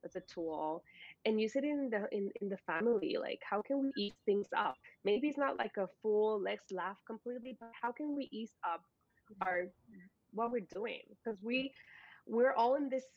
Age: 20-39